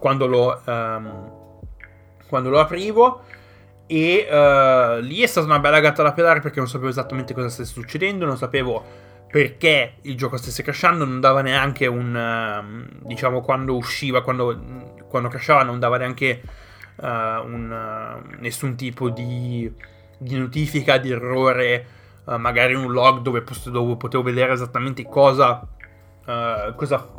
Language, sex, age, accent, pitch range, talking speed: Italian, male, 20-39, native, 120-145 Hz, 150 wpm